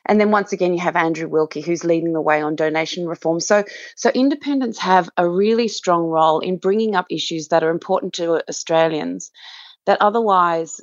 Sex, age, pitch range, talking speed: female, 30-49, 160-210 Hz, 190 wpm